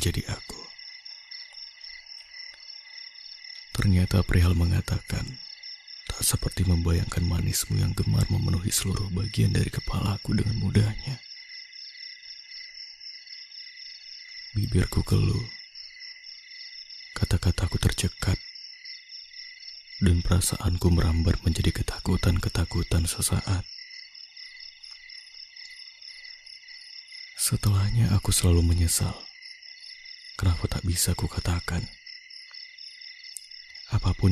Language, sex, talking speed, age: Indonesian, male, 70 wpm, 30-49